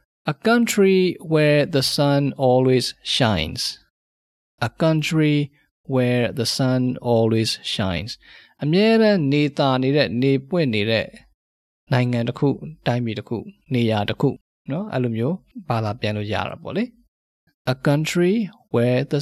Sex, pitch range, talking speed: male, 115-160 Hz, 65 wpm